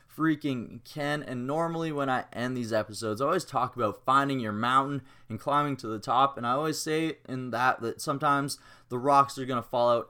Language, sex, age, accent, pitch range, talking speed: English, male, 20-39, American, 125-155 Hz, 210 wpm